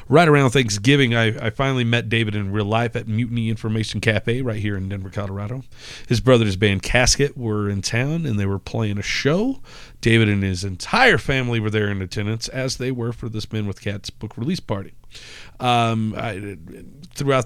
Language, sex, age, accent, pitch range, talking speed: English, male, 40-59, American, 105-130 Hz, 195 wpm